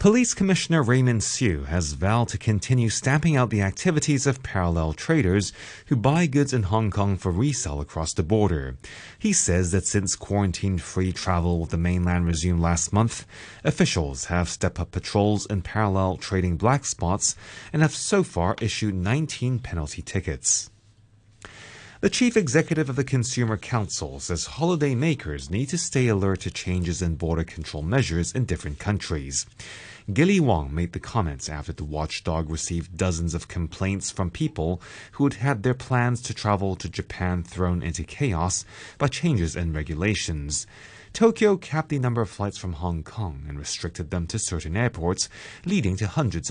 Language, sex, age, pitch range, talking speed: English, male, 30-49, 85-125 Hz, 165 wpm